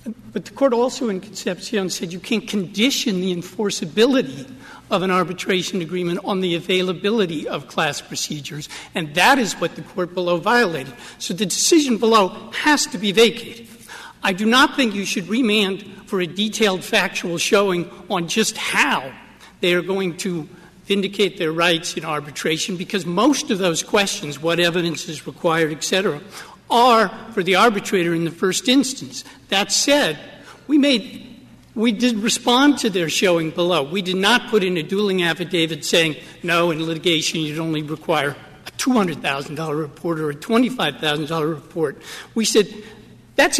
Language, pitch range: English, 175-225 Hz